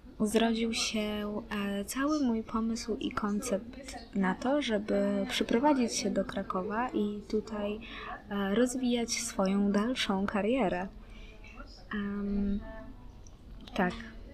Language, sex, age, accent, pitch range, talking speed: Polish, female, 20-39, native, 195-235 Hz, 100 wpm